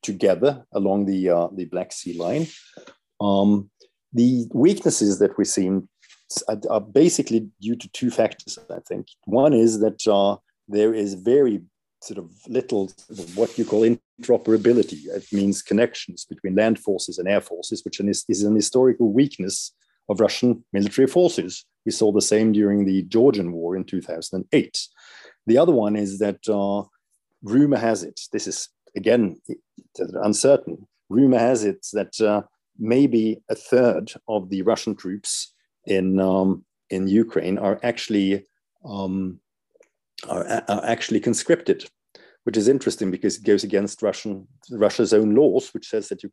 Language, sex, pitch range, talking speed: English, male, 95-115 Hz, 150 wpm